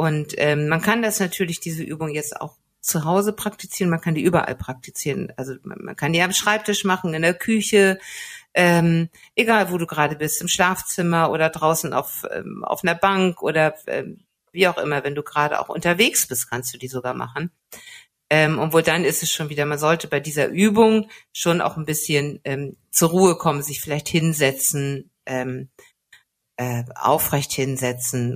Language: German